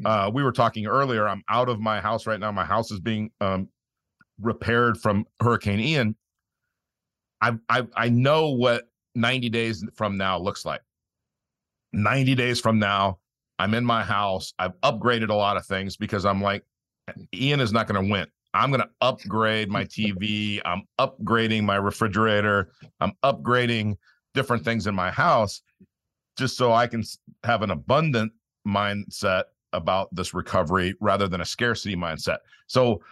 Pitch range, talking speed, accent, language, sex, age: 100-120 Hz, 160 wpm, American, English, male, 50-69